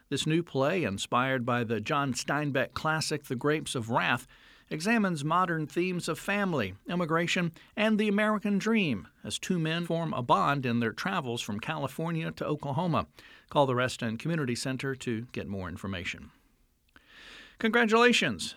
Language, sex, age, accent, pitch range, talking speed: English, male, 50-69, American, 130-180 Hz, 150 wpm